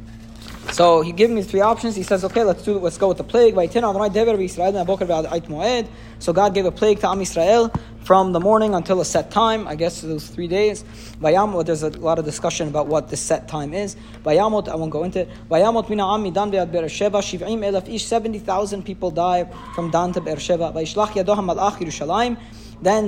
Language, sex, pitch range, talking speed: English, male, 160-205 Hz, 155 wpm